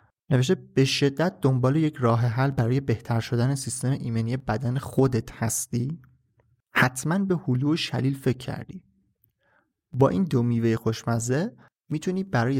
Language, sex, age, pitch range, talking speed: Persian, male, 30-49, 120-145 Hz, 140 wpm